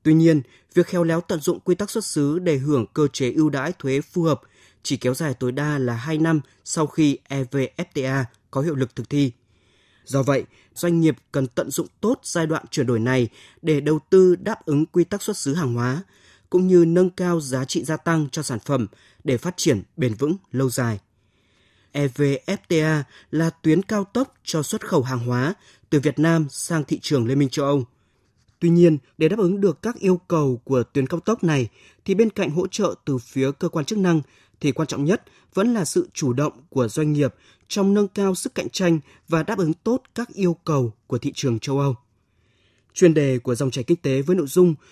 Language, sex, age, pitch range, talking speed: Vietnamese, male, 20-39, 130-170 Hz, 220 wpm